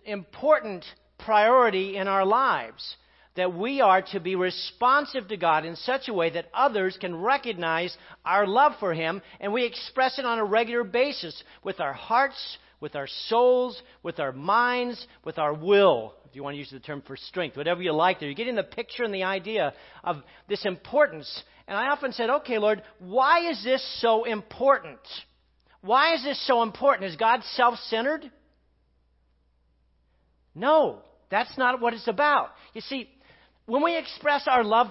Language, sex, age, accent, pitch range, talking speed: English, male, 50-69, American, 175-255 Hz, 170 wpm